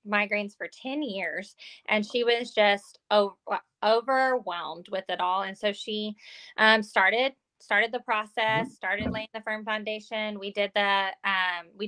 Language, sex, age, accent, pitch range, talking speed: English, female, 20-39, American, 190-245 Hz, 150 wpm